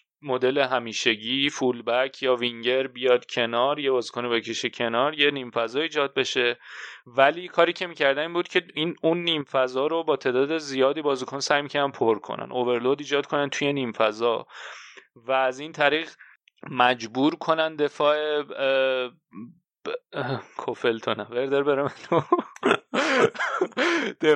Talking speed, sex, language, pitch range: 140 wpm, male, Persian, 130-160 Hz